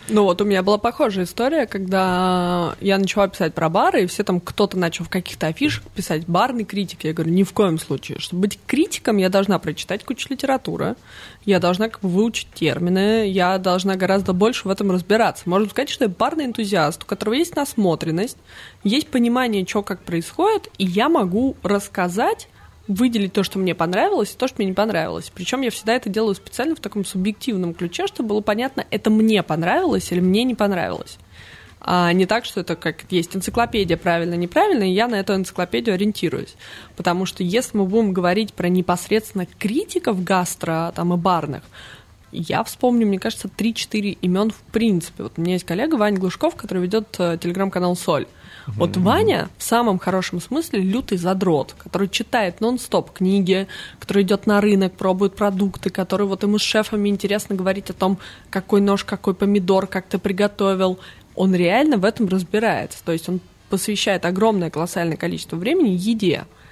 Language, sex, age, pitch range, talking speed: Russian, female, 20-39, 180-220 Hz, 175 wpm